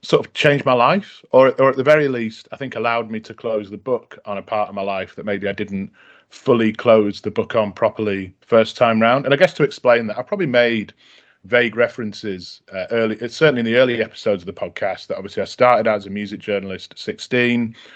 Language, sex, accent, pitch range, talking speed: English, male, British, 105-125 Hz, 235 wpm